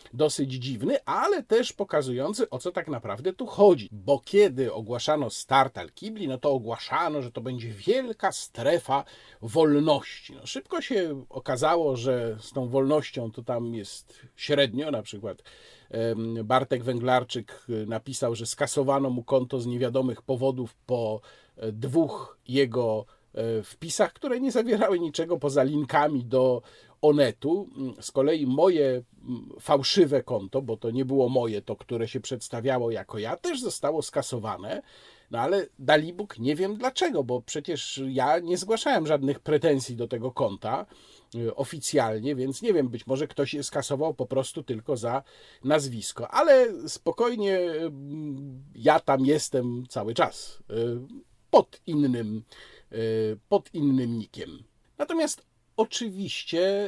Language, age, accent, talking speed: Polish, 40-59, native, 130 wpm